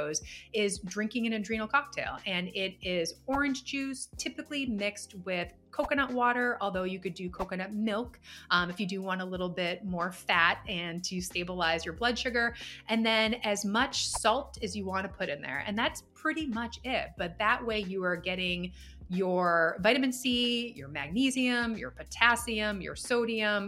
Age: 30-49